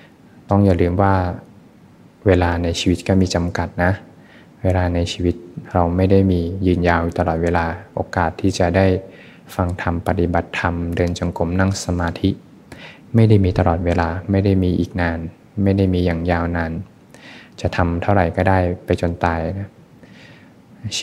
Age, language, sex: 20-39, Thai, male